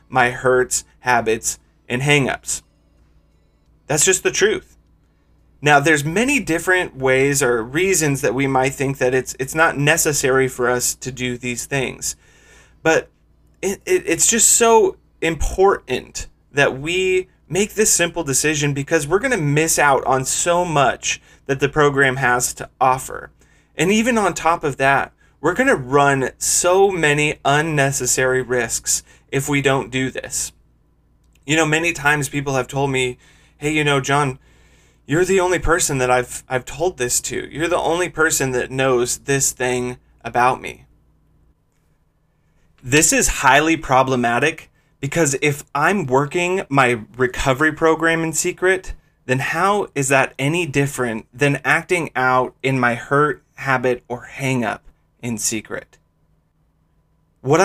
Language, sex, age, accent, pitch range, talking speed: English, male, 30-49, American, 130-165 Hz, 145 wpm